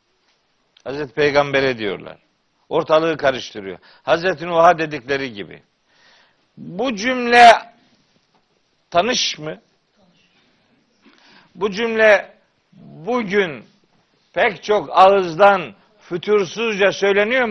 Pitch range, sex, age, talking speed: 170-235 Hz, male, 60-79, 70 wpm